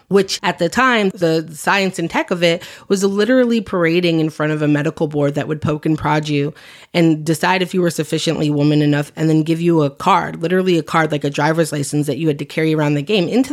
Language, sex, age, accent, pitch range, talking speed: English, female, 30-49, American, 160-195 Hz, 245 wpm